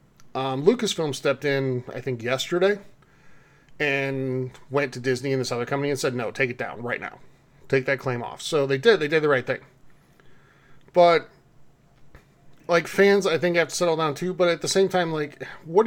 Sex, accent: male, American